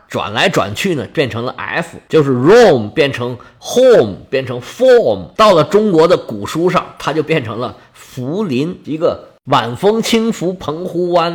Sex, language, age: male, Chinese, 50-69